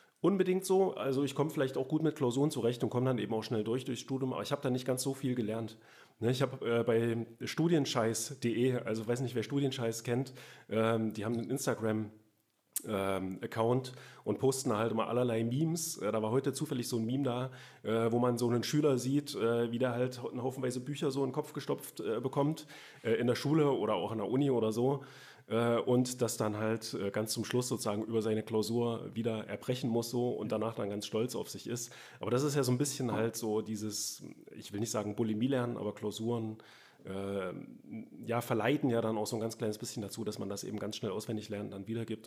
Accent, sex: German, male